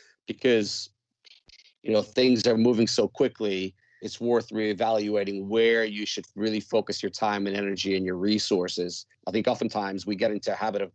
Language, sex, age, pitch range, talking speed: English, male, 40-59, 100-120 Hz, 175 wpm